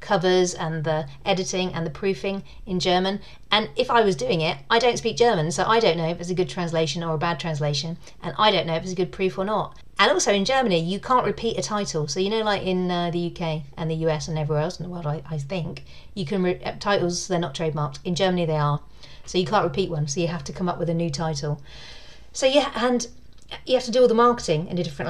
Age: 40-59